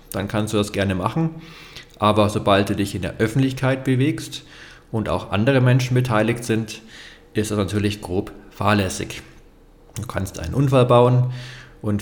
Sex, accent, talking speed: male, German, 155 wpm